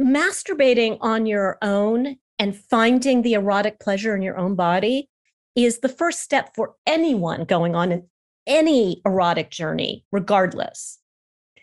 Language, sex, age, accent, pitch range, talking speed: English, female, 40-59, American, 175-230 Hz, 135 wpm